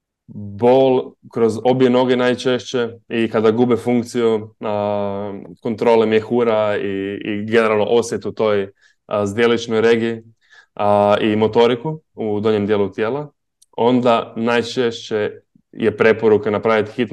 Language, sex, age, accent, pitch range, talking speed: Croatian, male, 20-39, Serbian, 105-130 Hz, 115 wpm